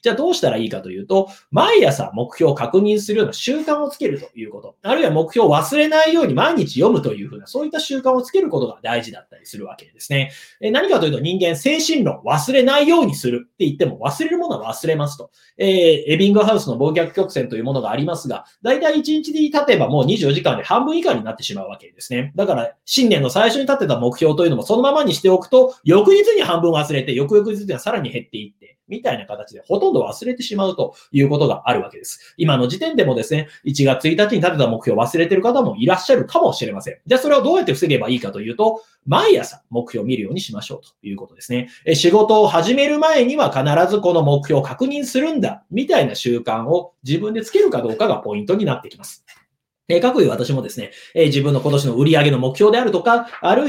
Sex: male